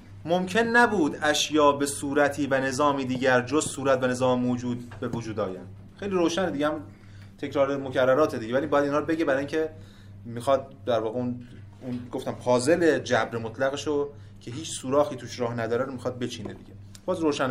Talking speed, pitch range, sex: 170 wpm, 105-160 Hz, male